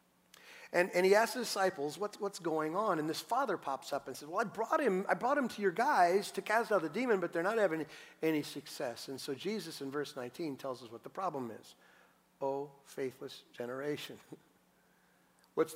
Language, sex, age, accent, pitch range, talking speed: English, male, 50-69, American, 150-215 Hz, 200 wpm